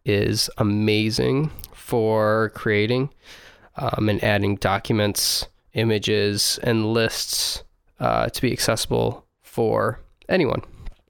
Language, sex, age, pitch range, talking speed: English, male, 20-39, 105-120 Hz, 90 wpm